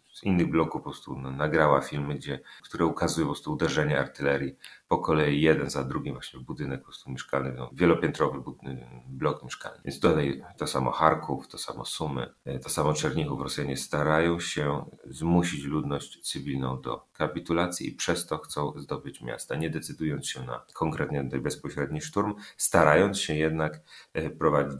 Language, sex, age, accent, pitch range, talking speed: Polish, male, 30-49, native, 65-80 Hz, 130 wpm